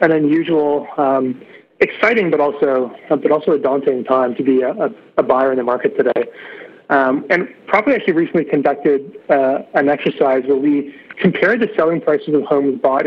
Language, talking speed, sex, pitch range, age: English, 185 wpm, male, 135-170 Hz, 30-49